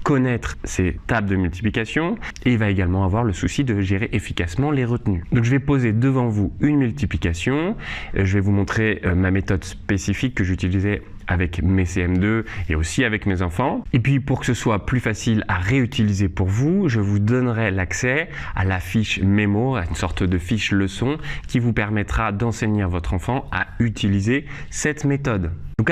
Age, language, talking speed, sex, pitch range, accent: 20-39, French, 185 wpm, male, 95-125 Hz, French